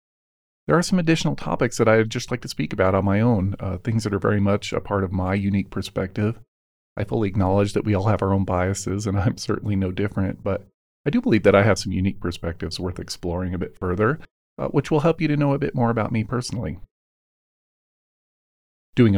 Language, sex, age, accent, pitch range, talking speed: English, male, 40-59, American, 90-110 Hz, 220 wpm